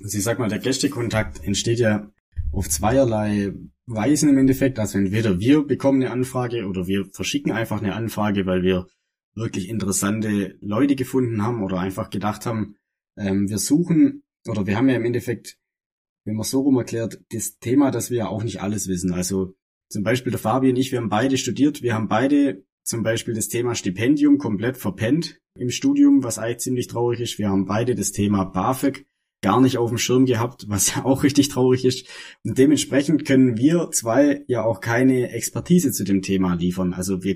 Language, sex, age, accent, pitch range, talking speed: German, male, 20-39, German, 100-130 Hz, 195 wpm